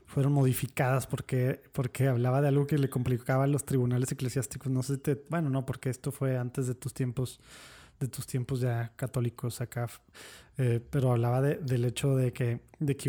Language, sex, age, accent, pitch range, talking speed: Spanish, male, 20-39, Mexican, 120-140 Hz, 195 wpm